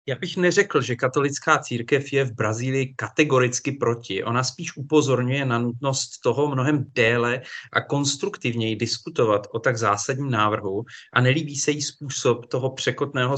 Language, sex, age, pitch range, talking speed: Czech, male, 30-49, 115-135 Hz, 150 wpm